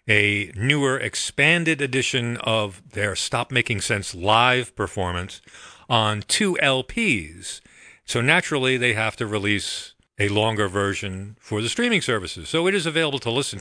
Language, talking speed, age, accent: English, 145 wpm, 50-69, American